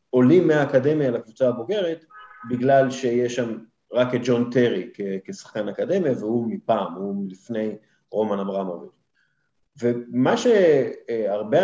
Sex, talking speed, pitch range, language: male, 110 wpm, 120-150 Hz, Hebrew